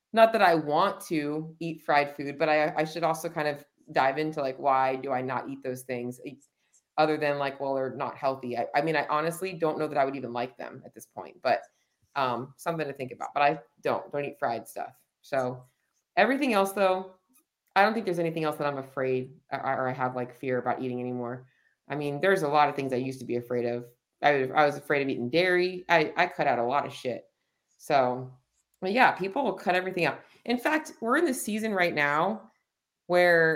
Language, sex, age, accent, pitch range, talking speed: English, female, 30-49, American, 140-185 Hz, 225 wpm